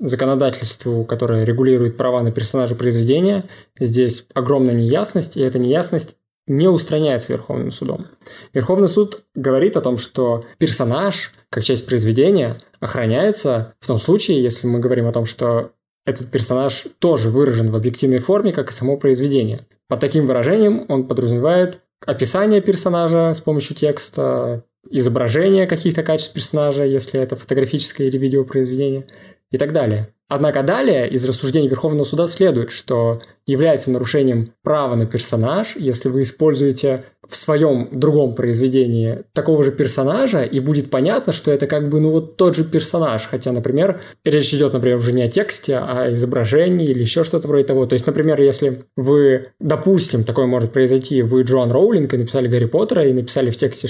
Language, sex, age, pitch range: Russian, male, 20-39, 120-150 Hz